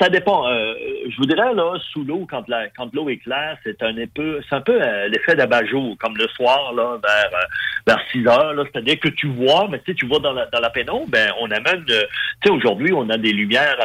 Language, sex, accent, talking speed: French, male, French, 250 wpm